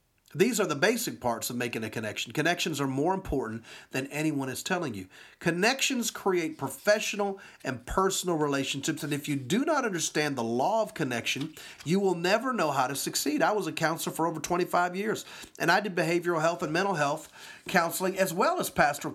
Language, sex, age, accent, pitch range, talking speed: English, male, 40-59, American, 140-190 Hz, 195 wpm